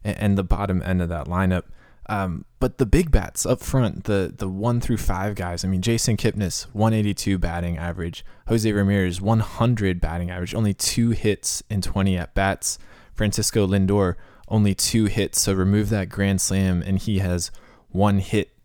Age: 20-39